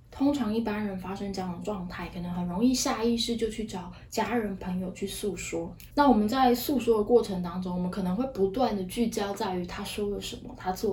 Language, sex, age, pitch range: Chinese, female, 20-39, 200-245 Hz